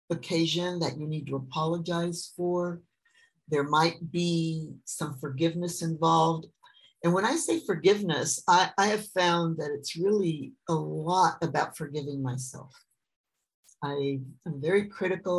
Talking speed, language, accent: 135 wpm, English, American